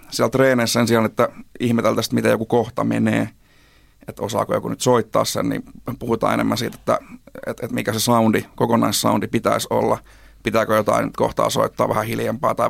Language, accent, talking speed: Finnish, native, 165 wpm